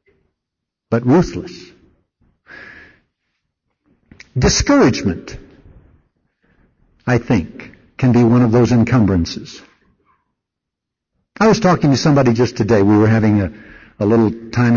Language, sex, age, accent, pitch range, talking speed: English, male, 60-79, American, 130-215 Hz, 100 wpm